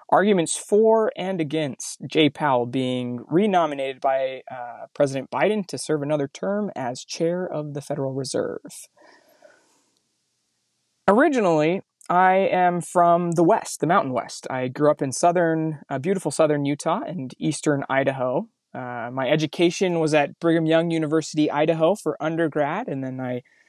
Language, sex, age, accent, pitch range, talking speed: English, male, 20-39, American, 135-170 Hz, 145 wpm